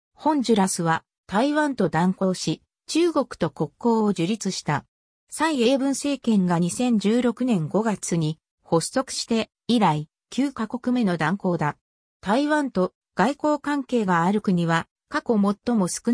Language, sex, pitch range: Japanese, female, 175-265 Hz